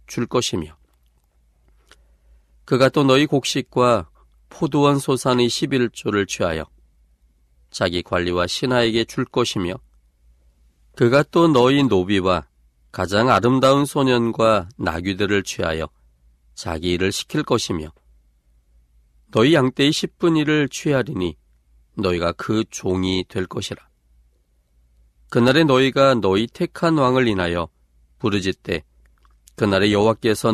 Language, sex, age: Korean, male, 40-59